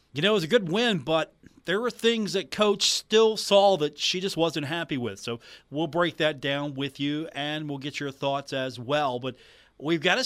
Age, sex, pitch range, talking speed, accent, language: 40-59, male, 130-160 Hz, 230 wpm, American, English